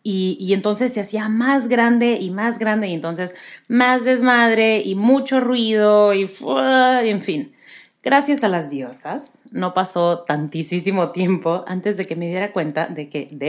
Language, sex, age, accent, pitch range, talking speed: Spanish, female, 30-49, Mexican, 180-250 Hz, 170 wpm